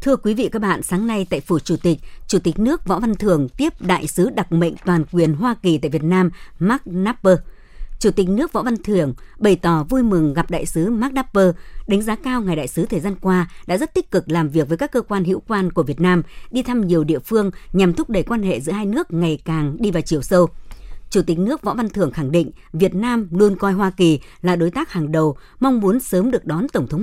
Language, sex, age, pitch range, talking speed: Vietnamese, male, 60-79, 165-215 Hz, 255 wpm